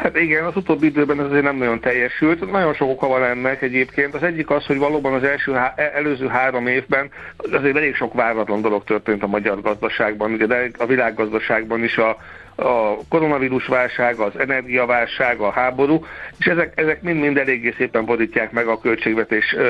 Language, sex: Hungarian, male